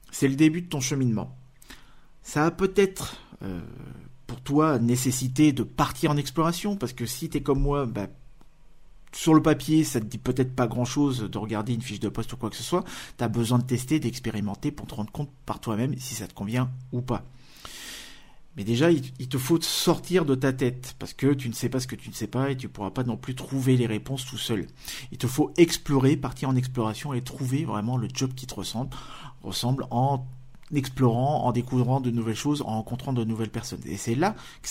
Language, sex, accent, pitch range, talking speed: French, male, French, 115-145 Hz, 225 wpm